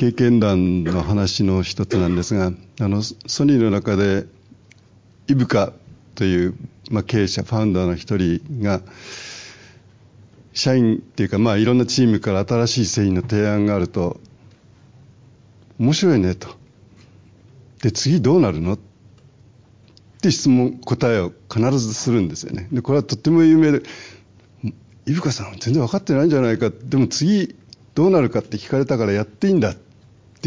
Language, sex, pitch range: Japanese, male, 105-140 Hz